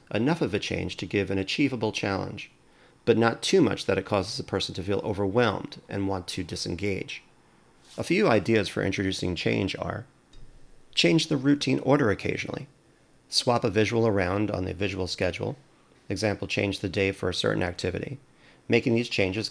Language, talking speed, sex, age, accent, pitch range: English, 170 wpm, male, 40-59, American, 95-115 Hz